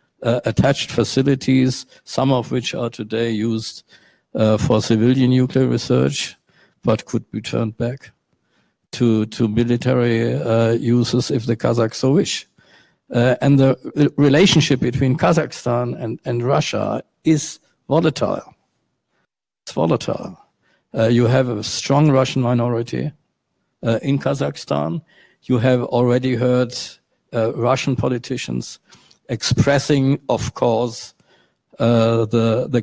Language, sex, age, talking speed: German, male, 50-69, 120 wpm